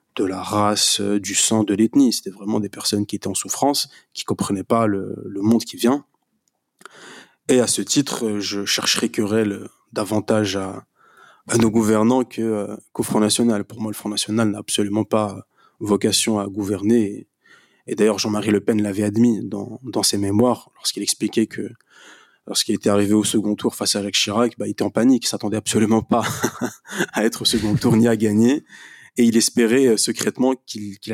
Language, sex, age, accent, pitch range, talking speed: French, male, 20-39, French, 105-115 Hz, 190 wpm